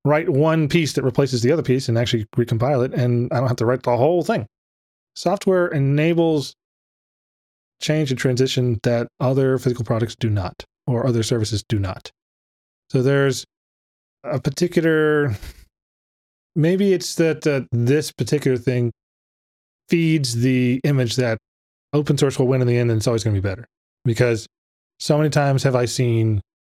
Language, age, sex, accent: English, 20-39, male, American